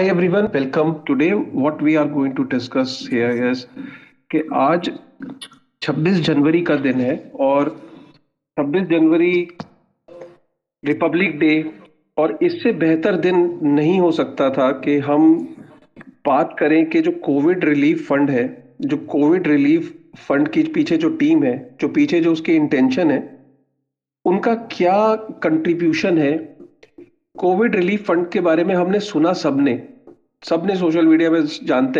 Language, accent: Hindi, native